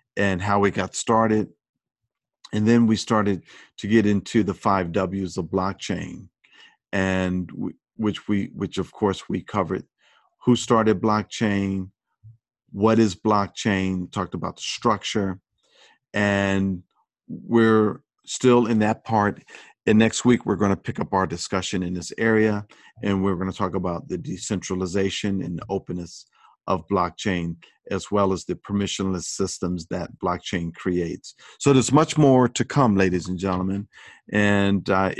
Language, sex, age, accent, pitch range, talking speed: English, male, 40-59, American, 95-110 Hz, 145 wpm